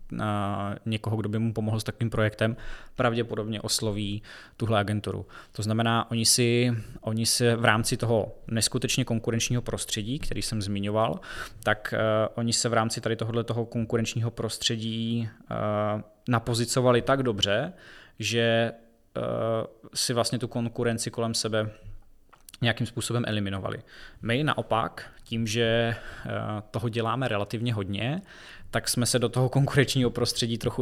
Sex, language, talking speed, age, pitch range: male, Czech, 140 wpm, 20-39, 110-120 Hz